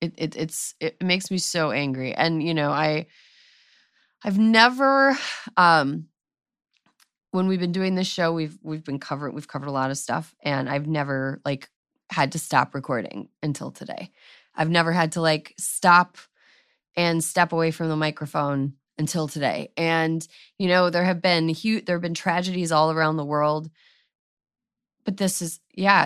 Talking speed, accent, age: 170 wpm, American, 20-39